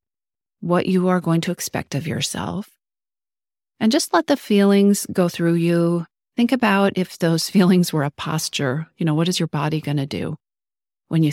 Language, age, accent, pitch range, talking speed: English, 40-59, American, 140-180 Hz, 185 wpm